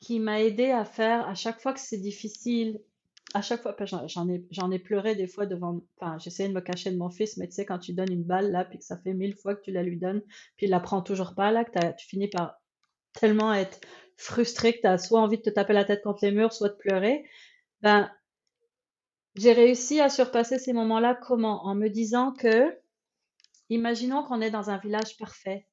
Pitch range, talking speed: 195-240 Hz, 235 wpm